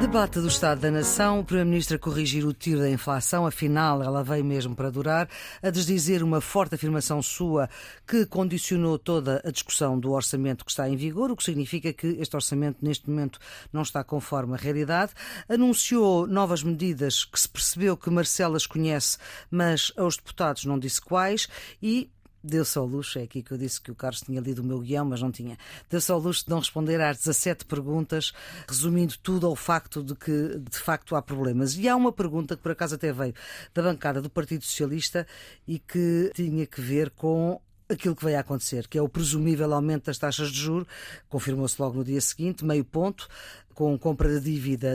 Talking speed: 200 wpm